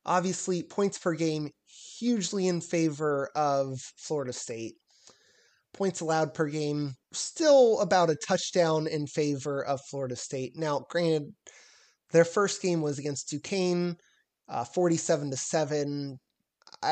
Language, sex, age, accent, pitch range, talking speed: English, male, 20-39, American, 140-175 Hz, 115 wpm